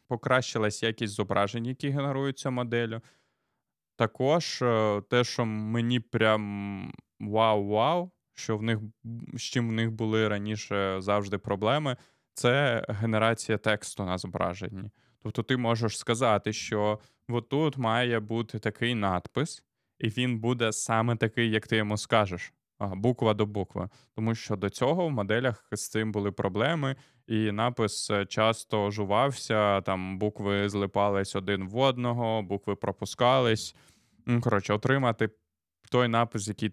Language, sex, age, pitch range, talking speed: Ukrainian, male, 20-39, 105-125 Hz, 125 wpm